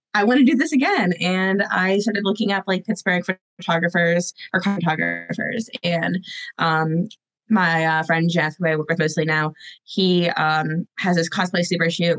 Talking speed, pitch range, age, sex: 170 wpm, 160-190 Hz, 20-39, female